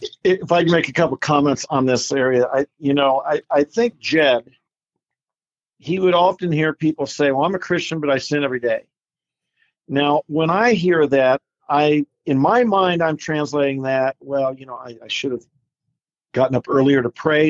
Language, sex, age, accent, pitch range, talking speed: English, male, 50-69, American, 130-160 Hz, 195 wpm